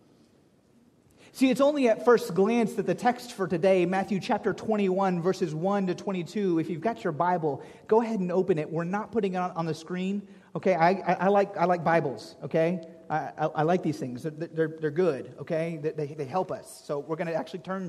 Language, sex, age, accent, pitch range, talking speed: English, male, 30-49, American, 165-215 Hz, 225 wpm